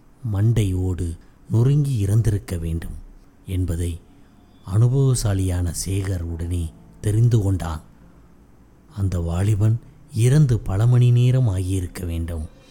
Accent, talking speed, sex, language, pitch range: native, 85 wpm, male, Tamil, 90-125 Hz